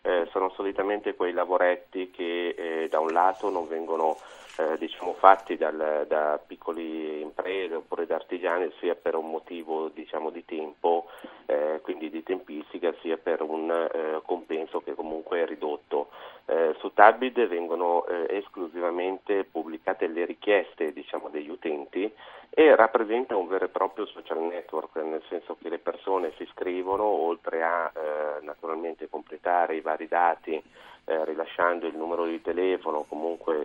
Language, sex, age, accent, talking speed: Italian, male, 40-59, native, 145 wpm